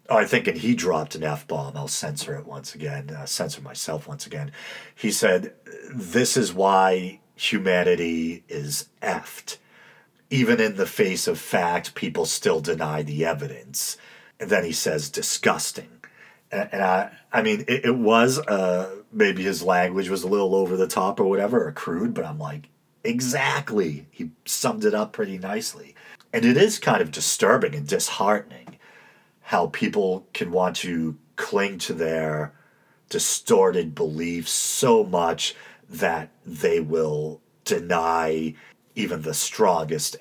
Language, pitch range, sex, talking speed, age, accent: English, 75-120 Hz, male, 150 wpm, 40-59, American